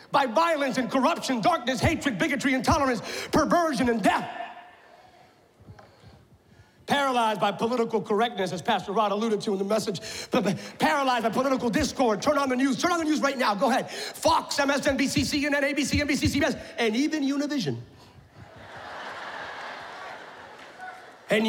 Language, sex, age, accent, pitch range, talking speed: English, male, 40-59, American, 255-330 Hz, 135 wpm